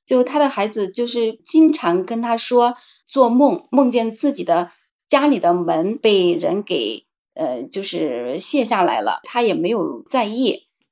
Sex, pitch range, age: female, 190-275 Hz, 20-39